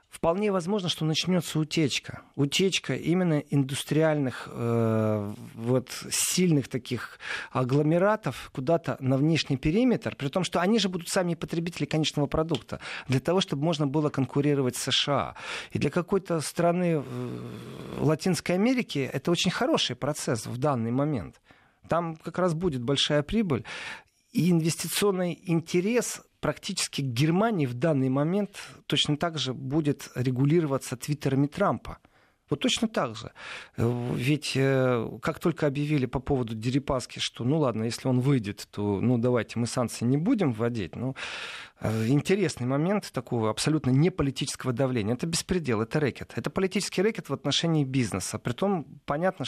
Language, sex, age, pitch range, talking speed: Russian, male, 40-59, 125-170 Hz, 140 wpm